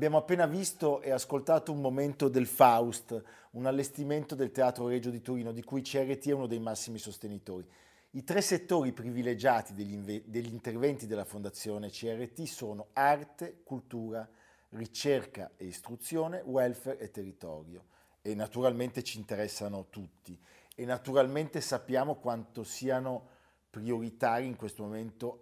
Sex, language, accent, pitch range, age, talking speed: male, Italian, native, 105-135 Hz, 50-69, 135 wpm